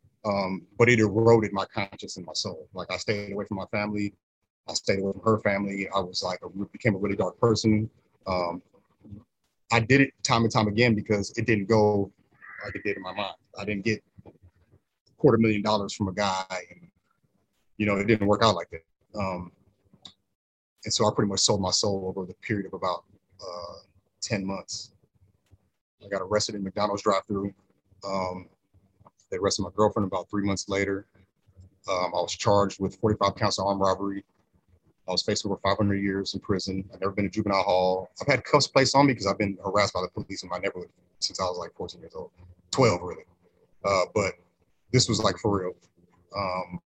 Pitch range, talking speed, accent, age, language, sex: 95-110 Hz, 205 wpm, American, 30-49, English, male